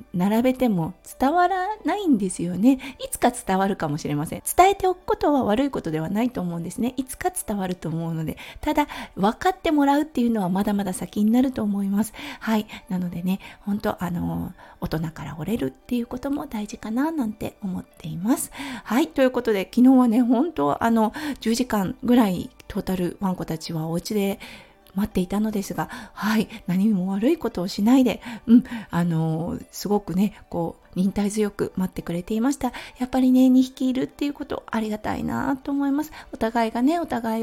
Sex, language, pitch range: female, Japanese, 195-265 Hz